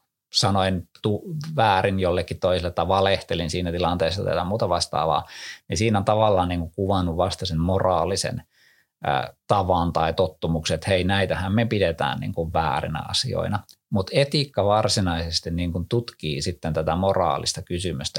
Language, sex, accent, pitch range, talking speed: Finnish, male, native, 85-110 Hz, 140 wpm